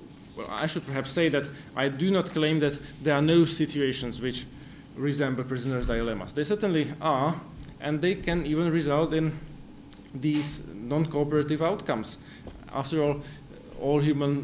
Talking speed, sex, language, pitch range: 145 wpm, male, Italian, 135-155 Hz